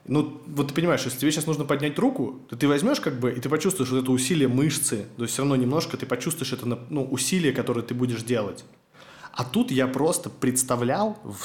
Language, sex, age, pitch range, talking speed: Russian, male, 20-39, 110-135 Hz, 220 wpm